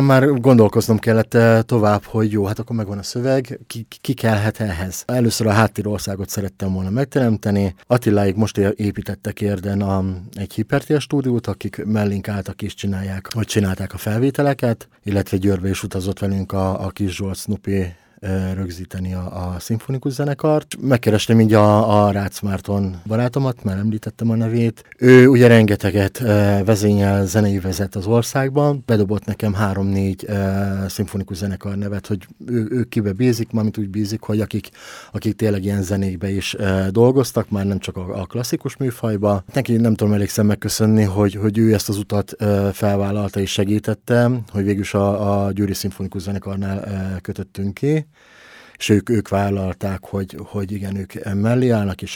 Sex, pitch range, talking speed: male, 100-115 Hz, 160 wpm